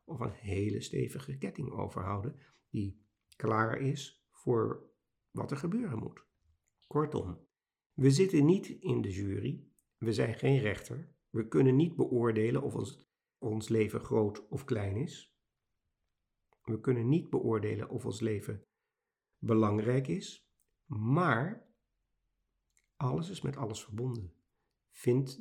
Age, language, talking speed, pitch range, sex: 50-69, Dutch, 125 wpm, 105-140 Hz, male